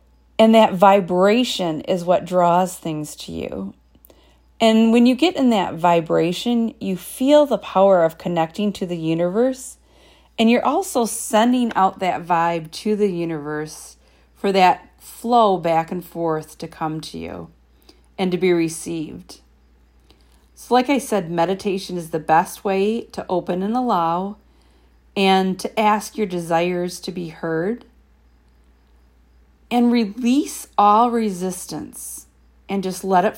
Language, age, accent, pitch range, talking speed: English, 40-59, American, 160-215 Hz, 140 wpm